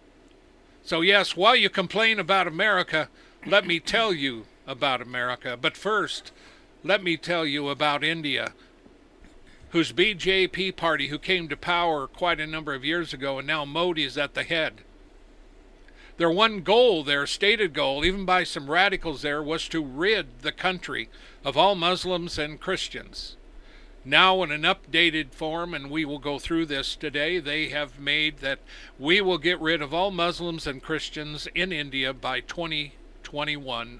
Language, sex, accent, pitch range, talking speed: English, male, American, 145-185 Hz, 160 wpm